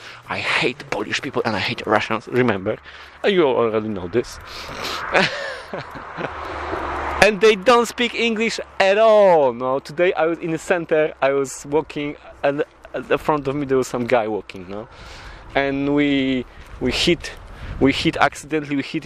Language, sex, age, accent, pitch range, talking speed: English, male, 30-49, Polish, 130-170 Hz, 160 wpm